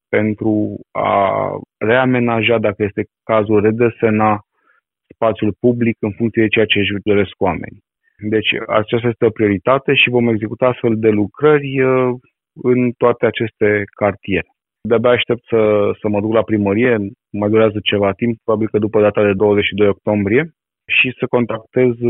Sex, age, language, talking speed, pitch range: male, 20-39, Romanian, 145 wpm, 100-115 Hz